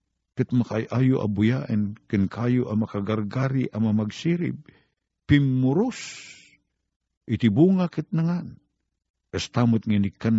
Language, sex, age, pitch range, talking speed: Filipino, male, 50-69, 95-130 Hz, 70 wpm